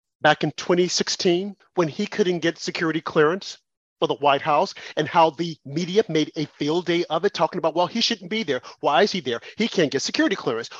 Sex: male